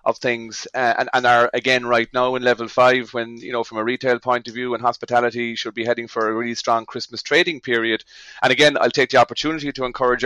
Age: 30-49